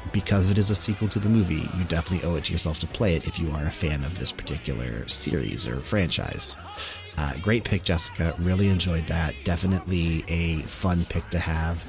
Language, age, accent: English, 30-49, American